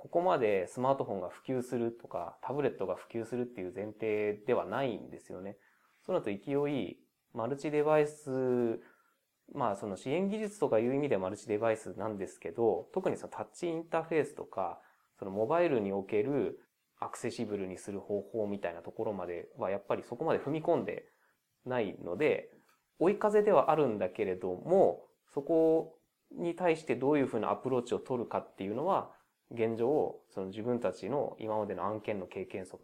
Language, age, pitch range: Japanese, 20-39, 105-150 Hz